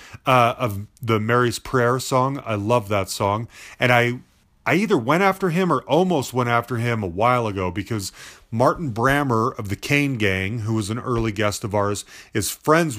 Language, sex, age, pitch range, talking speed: English, male, 30-49, 110-140 Hz, 190 wpm